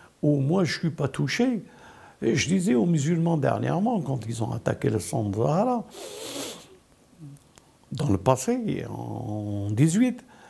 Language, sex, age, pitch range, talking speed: French, male, 60-79, 145-225 Hz, 155 wpm